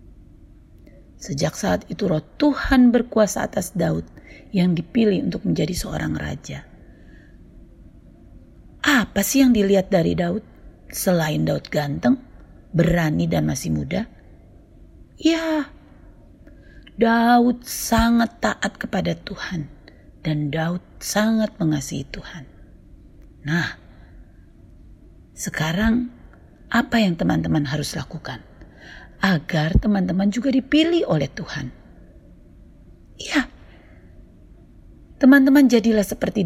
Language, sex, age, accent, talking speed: Indonesian, female, 40-59, native, 90 wpm